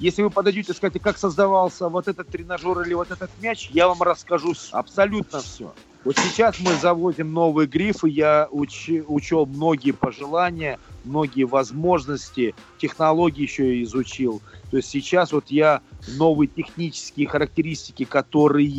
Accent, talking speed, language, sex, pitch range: native, 145 wpm, Russian, male, 130-165 Hz